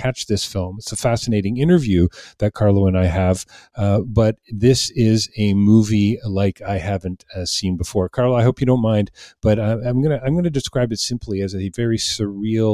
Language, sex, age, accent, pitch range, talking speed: English, male, 40-59, American, 95-120 Hz, 210 wpm